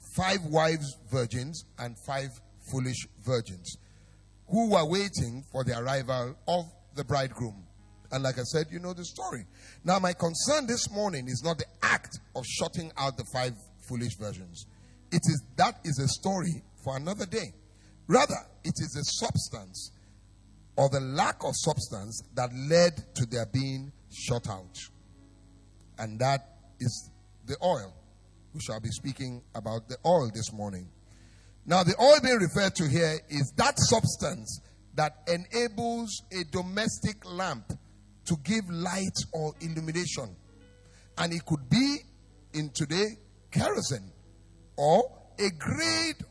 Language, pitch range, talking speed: English, 105-175 Hz, 145 wpm